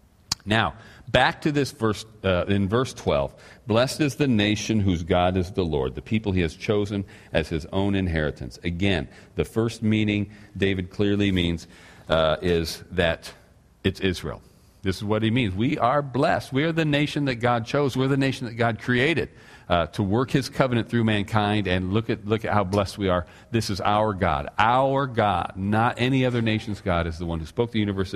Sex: male